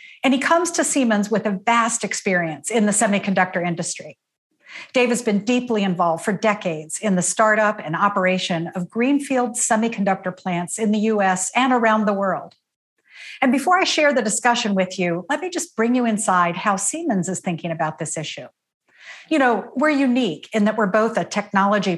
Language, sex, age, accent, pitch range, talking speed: English, female, 50-69, American, 185-250 Hz, 185 wpm